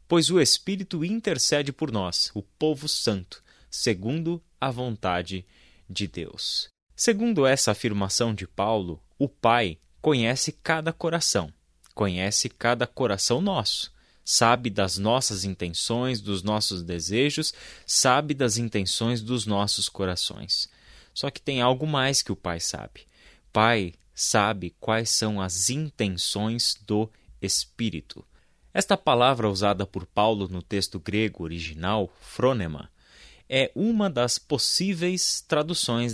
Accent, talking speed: Brazilian, 120 wpm